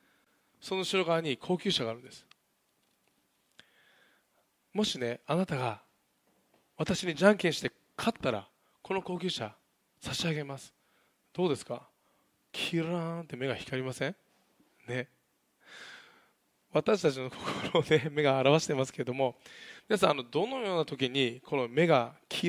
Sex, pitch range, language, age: male, 135-180 Hz, Japanese, 20-39